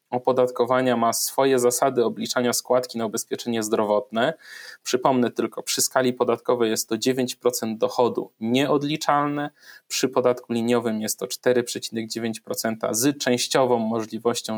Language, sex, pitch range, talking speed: Polish, male, 120-140 Hz, 115 wpm